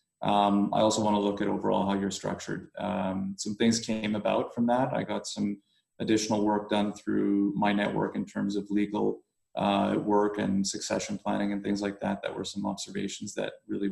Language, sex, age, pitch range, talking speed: English, male, 30-49, 105-125 Hz, 200 wpm